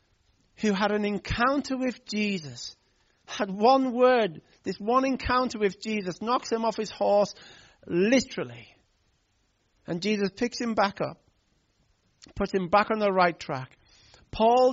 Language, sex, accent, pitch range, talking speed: English, male, British, 170-225 Hz, 140 wpm